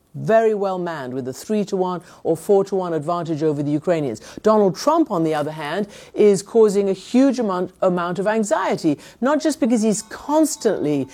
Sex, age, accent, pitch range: female, 50-69, British, 160-215 Hz